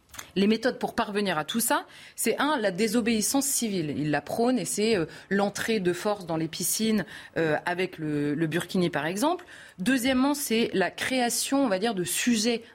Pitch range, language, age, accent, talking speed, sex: 180-235 Hz, French, 30-49, French, 190 wpm, female